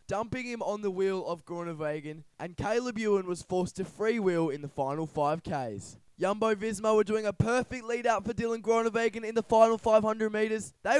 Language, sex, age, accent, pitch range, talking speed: English, male, 20-39, Australian, 190-245 Hz, 200 wpm